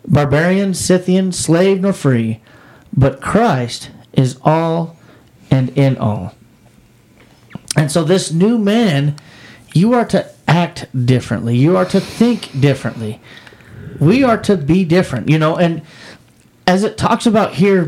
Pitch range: 130-175 Hz